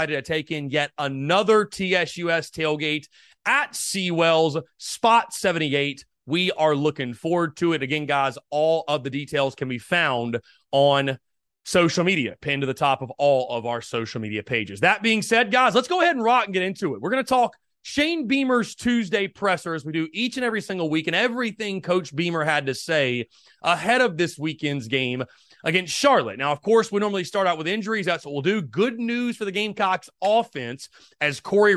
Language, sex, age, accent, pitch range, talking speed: English, male, 30-49, American, 145-195 Hz, 195 wpm